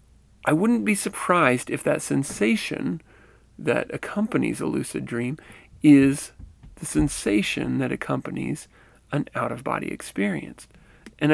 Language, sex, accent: English, male, American